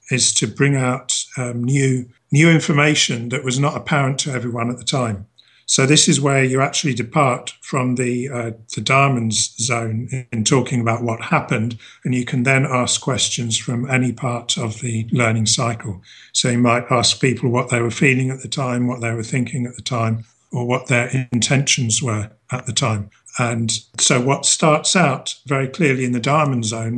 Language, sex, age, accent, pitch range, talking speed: English, male, 50-69, British, 120-140 Hz, 190 wpm